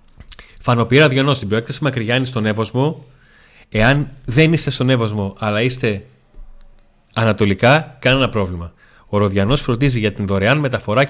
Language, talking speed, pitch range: Greek, 135 wpm, 110-140 Hz